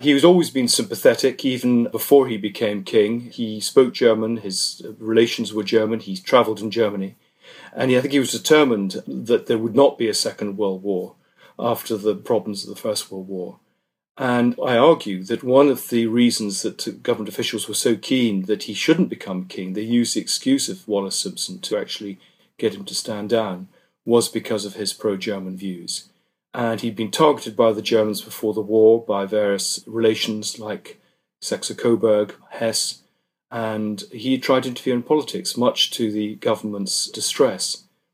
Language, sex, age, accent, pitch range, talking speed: English, male, 40-59, British, 105-125 Hz, 175 wpm